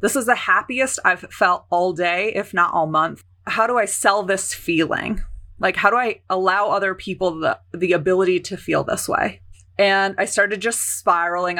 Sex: female